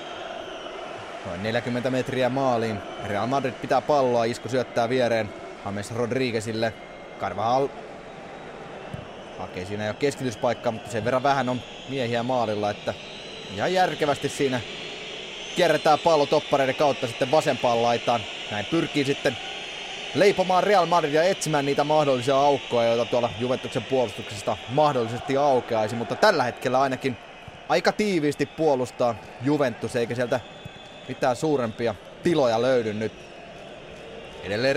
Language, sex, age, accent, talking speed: Finnish, male, 20-39, native, 120 wpm